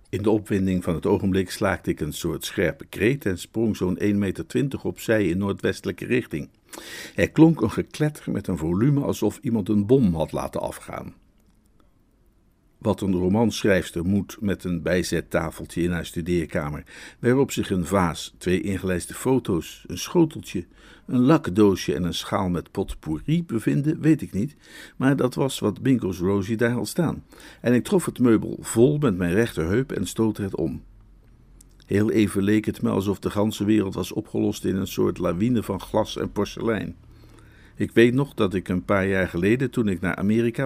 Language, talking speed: Dutch, 175 wpm